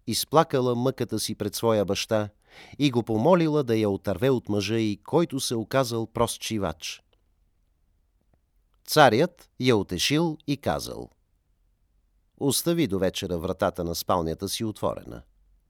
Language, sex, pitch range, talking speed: Bulgarian, male, 85-125 Hz, 125 wpm